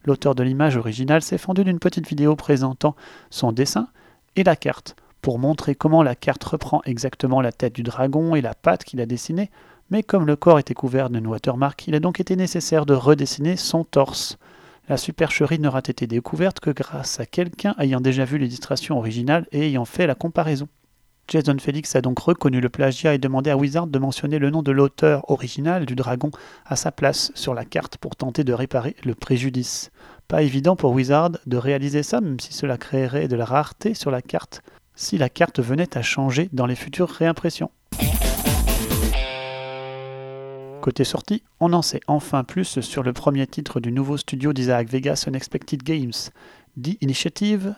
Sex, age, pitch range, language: male, 30-49, 130-160 Hz, French